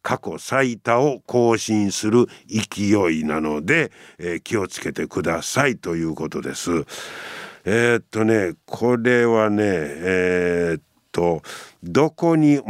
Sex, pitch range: male, 95-140 Hz